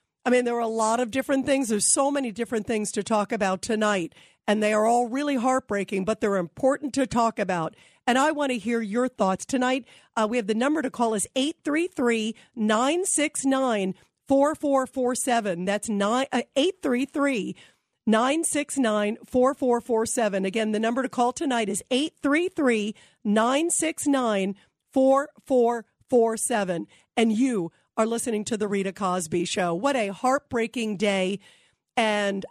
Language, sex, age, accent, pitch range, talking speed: English, female, 50-69, American, 215-270 Hz, 135 wpm